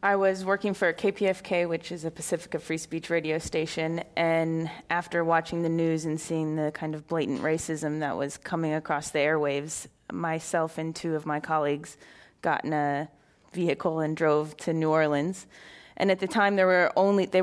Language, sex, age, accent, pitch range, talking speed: English, female, 20-39, American, 160-175 Hz, 175 wpm